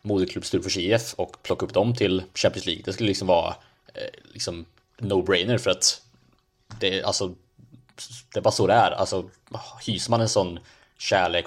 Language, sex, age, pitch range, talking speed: English, male, 20-39, 90-120 Hz, 180 wpm